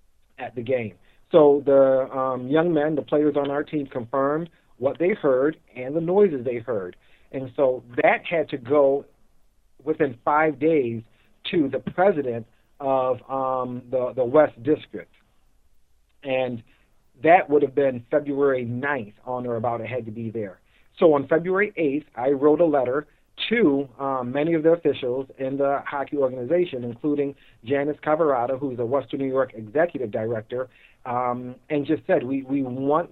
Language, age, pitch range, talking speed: English, 40-59, 125-150 Hz, 165 wpm